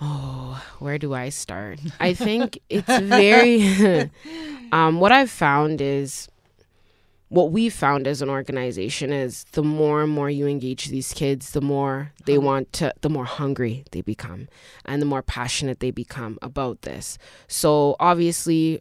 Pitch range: 140-170 Hz